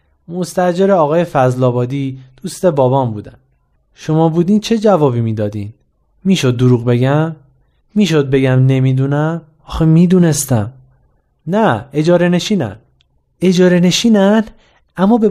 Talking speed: 100 wpm